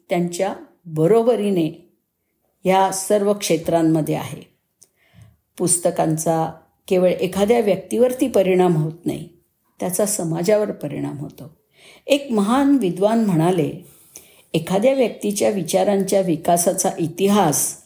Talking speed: 85 wpm